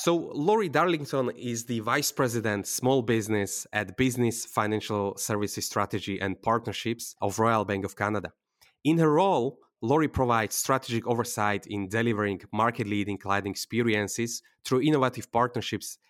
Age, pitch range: 20-39, 105-135 Hz